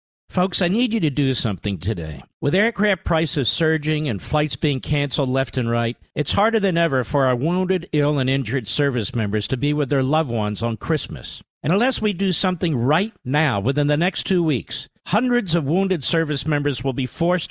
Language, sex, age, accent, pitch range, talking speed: English, male, 50-69, American, 135-185 Hz, 200 wpm